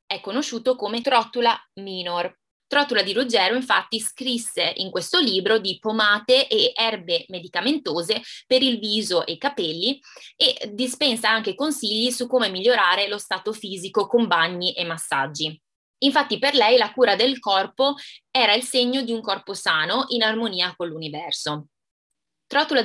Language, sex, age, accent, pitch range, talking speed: Italian, female, 20-39, native, 185-255 Hz, 150 wpm